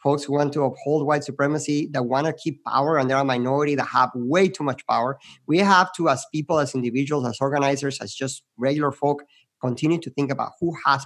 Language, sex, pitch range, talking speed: English, male, 135-170 Hz, 220 wpm